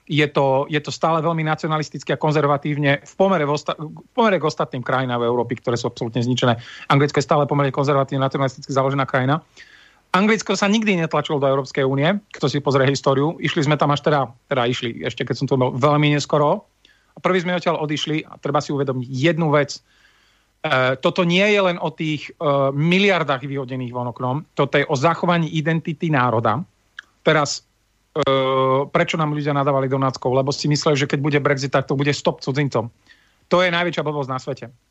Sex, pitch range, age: male, 130-160 Hz, 40-59